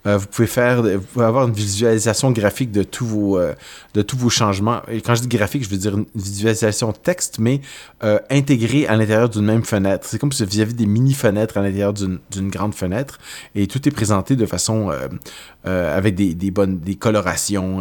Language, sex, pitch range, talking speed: French, male, 95-115 Hz, 215 wpm